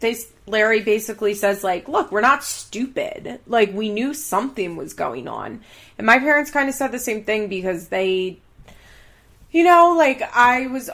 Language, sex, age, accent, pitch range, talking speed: English, female, 20-39, American, 195-260 Hz, 170 wpm